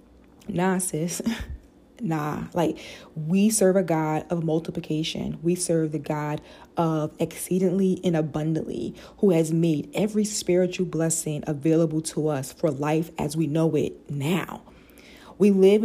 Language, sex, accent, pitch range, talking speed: English, female, American, 160-200 Hz, 135 wpm